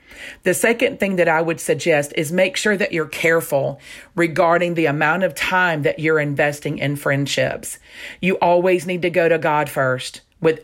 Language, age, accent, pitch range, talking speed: English, 40-59, American, 150-175 Hz, 180 wpm